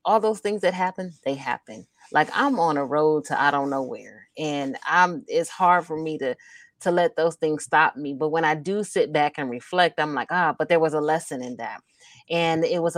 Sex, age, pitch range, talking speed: female, 30-49, 155-175 Hz, 235 wpm